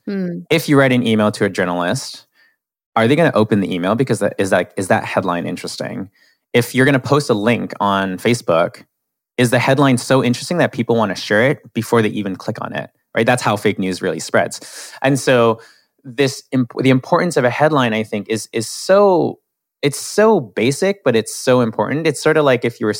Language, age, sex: English, 20-39, male